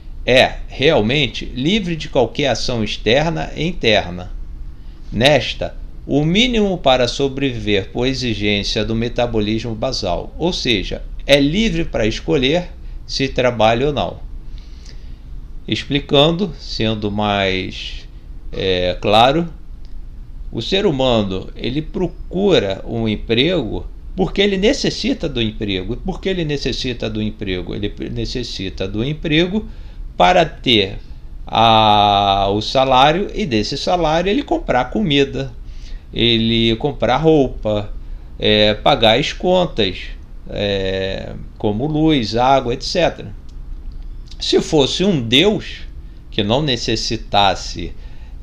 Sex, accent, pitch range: male, Brazilian, 85-130 Hz